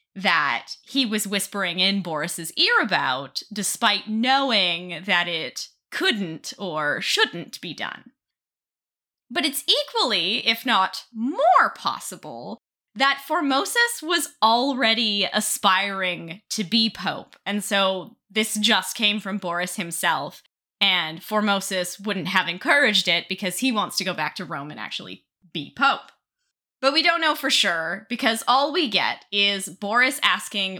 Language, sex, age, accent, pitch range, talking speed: English, female, 10-29, American, 185-270 Hz, 140 wpm